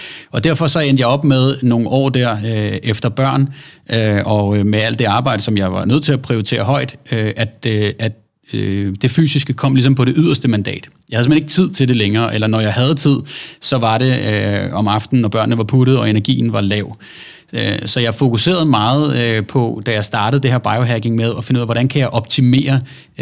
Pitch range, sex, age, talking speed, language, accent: 105-130 Hz, male, 30-49, 205 wpm, Danish, native